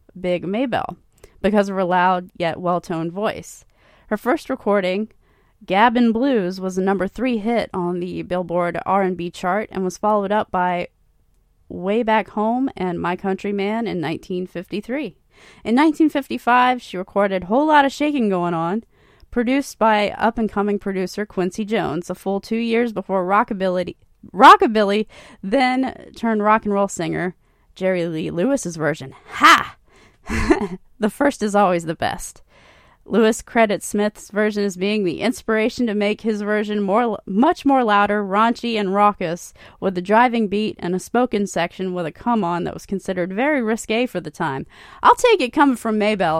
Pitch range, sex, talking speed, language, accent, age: 180-225 Hz, female, 155 wpm, English, American, 20-39